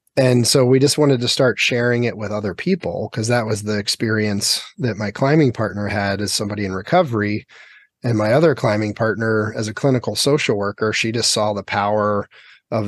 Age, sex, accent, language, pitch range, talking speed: 30-49, male, American, English, 105-125 Hz, 195 wpm